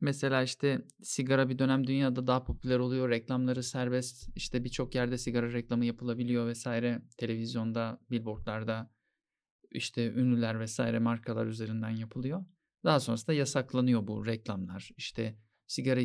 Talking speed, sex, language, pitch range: 125 wpm, male, Turkish, 120-140 Hz